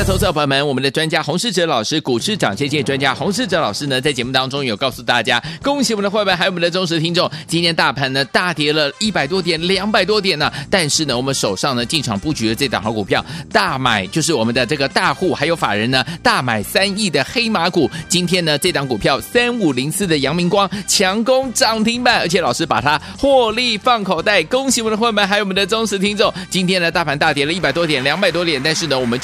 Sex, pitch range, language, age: male, 145-205 Hz, Chinese, 30-49